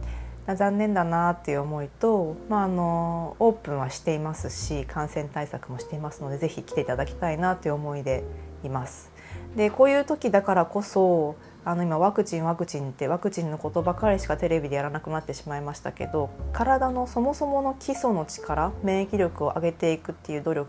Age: 30-49